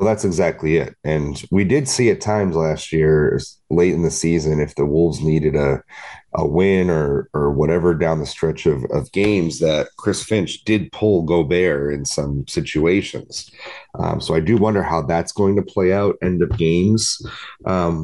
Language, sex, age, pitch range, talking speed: English, male, 30-49, 80-105 Hz, 185 wpm